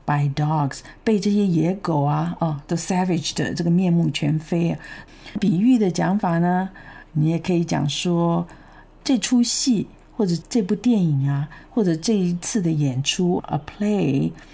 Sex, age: female, 50-69